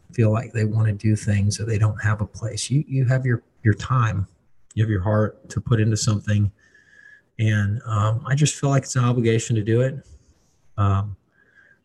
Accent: American